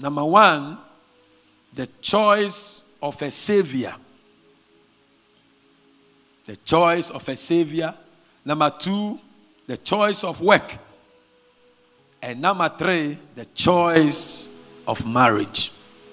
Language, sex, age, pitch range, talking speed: English, male, 50-69, 155-225 Hz, 95 wpm